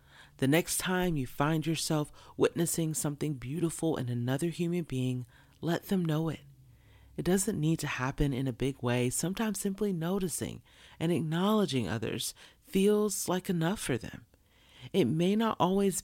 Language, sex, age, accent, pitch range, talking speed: English, female, 40-59, American, 125-165 Hz, 155 wpm